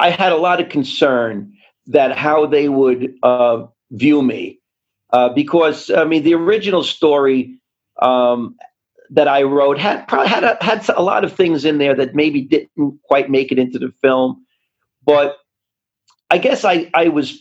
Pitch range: 130-165 Hz